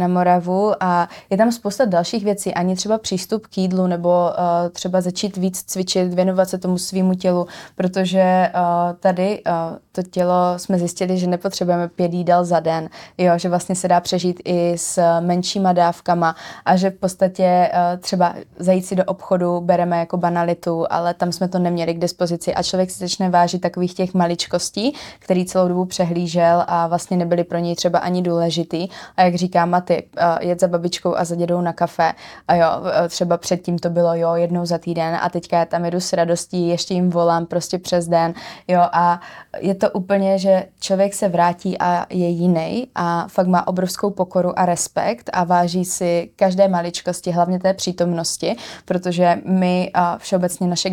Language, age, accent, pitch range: Czech, 20-39, native, 175-185 Hz